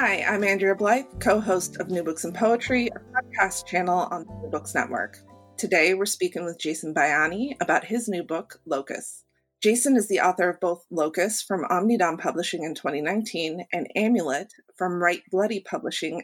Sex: female